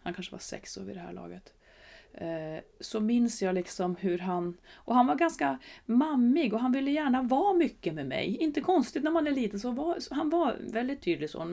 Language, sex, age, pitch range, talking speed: Swedish, female, 30-49, 180-265 Hz, 215 wpm